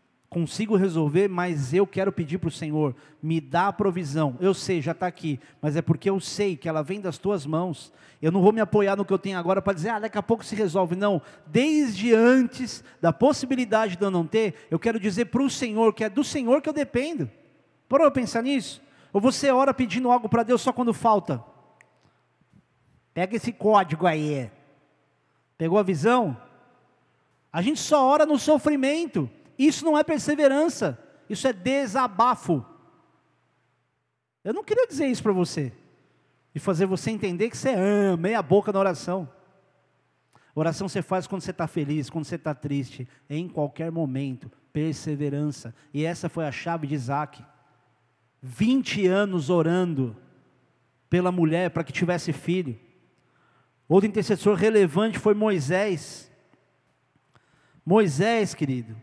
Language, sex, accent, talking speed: Portuguese, male, Brazilian, 165 wpm